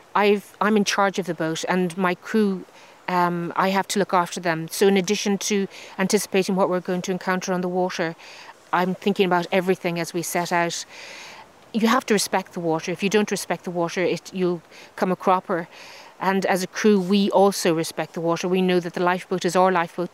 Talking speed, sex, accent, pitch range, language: 215 wpm, female, Irish, 175-195 Hz, English